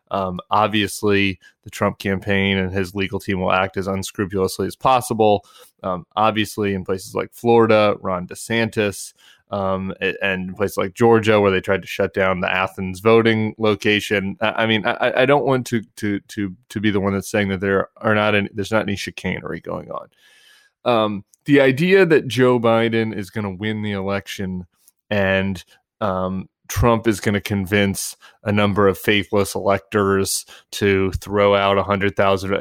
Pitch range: 95-110 Hz